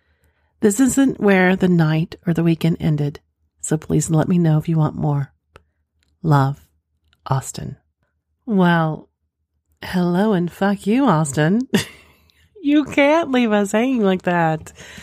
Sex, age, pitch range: female, 40-59, 140-190 Hz